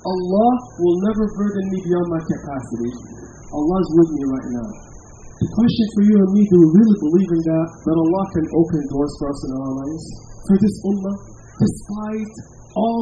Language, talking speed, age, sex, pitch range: English, 190 wpm, 40-59, male, 150-205 Hz